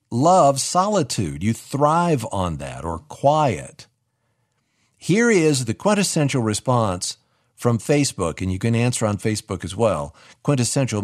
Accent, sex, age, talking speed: American, male, 50-69, 130 wpm